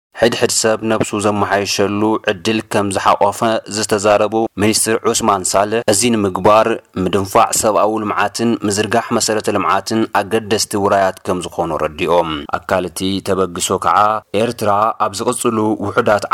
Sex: male